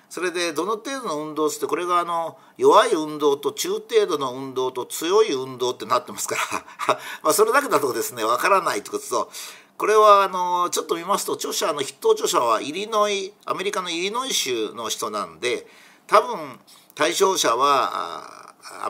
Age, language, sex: 50-69, Japanese, male